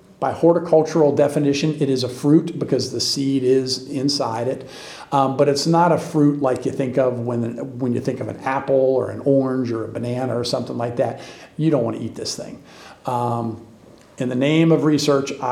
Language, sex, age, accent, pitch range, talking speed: English, male, 50-69, American, 130-160 Hz, 205 wpm